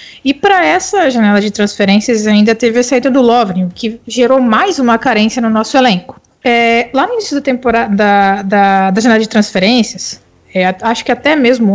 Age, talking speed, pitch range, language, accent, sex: 20-39, 190 wpm, 200-255 Hz, Portuguese, Brazilian, female